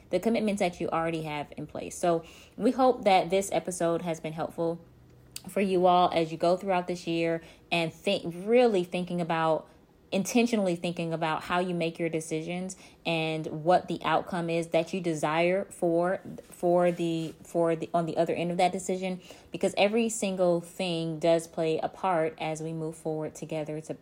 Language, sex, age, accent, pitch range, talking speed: English, female, 20-39, American, 160-180 Hz, 185 wpm